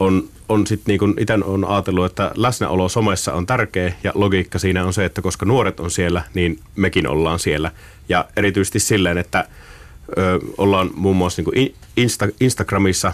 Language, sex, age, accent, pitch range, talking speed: Finnish, male, 30-49, native, 85-100 Hz, 165 wpm